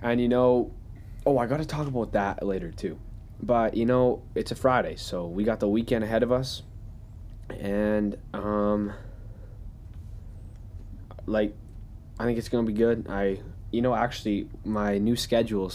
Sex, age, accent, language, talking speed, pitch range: male, 20-39, American, English, 155 wpm, 100-110 Hz